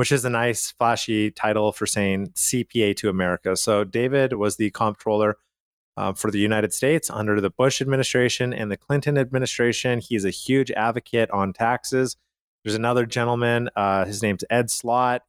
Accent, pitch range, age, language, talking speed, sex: American, 110-130 Hz, 30-49, English, 170 wpm, male